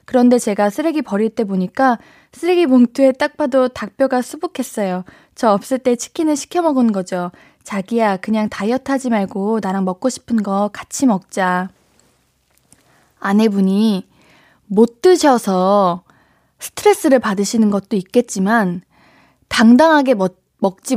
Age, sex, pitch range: 20-39, female, 195-275 Hz